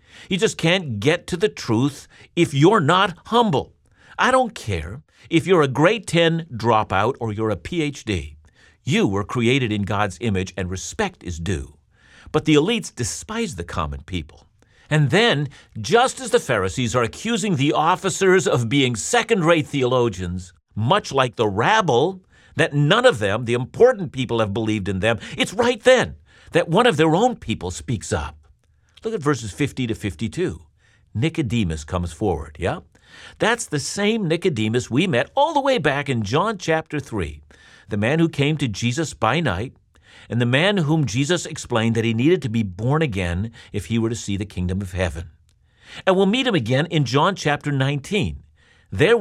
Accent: American